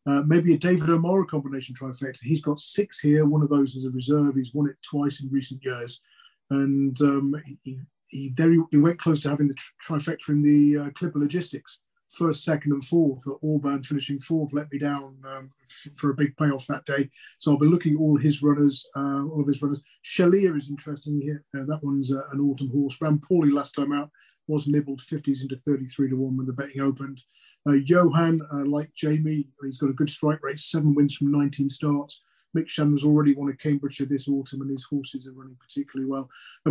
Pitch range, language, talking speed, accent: 140-150 Hz, English, 210 wpm, British